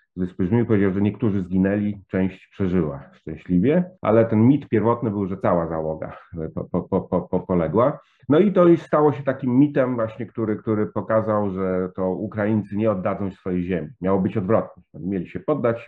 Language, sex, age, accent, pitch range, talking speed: English, male, 30-49, Polish, 90-110 Hz, 165 wpm